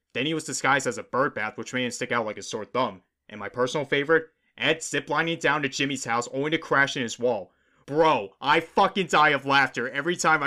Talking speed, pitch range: 235 wpm, 115-145 Hz